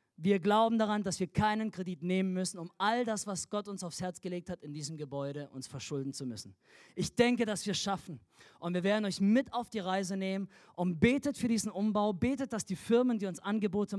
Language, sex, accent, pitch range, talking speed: German, male, German, 160-205 Hz, 225 wpm